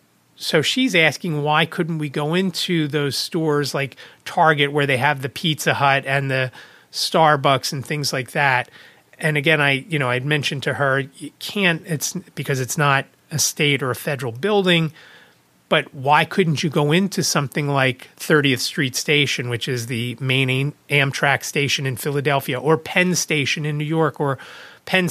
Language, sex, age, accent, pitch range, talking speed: English, male, 30-49, American, 135-170 Hz, 175 wpm